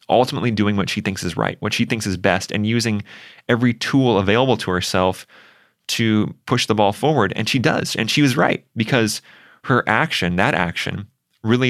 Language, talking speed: English, 190 wpm